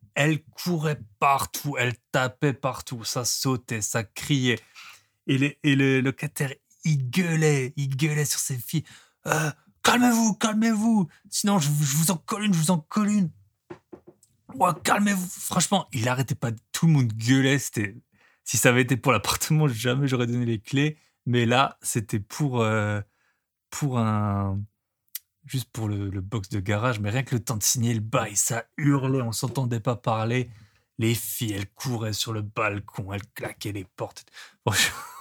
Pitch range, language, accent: 115-145 Hz, French, French